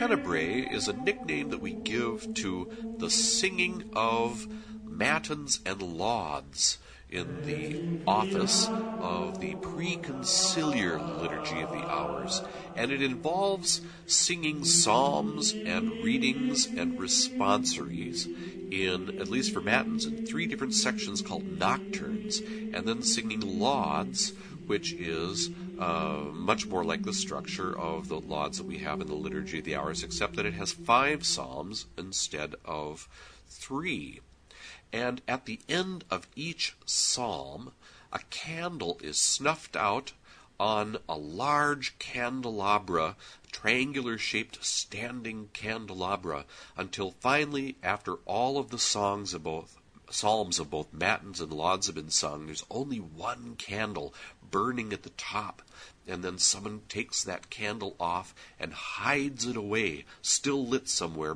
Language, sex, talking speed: English, male, 135 wpm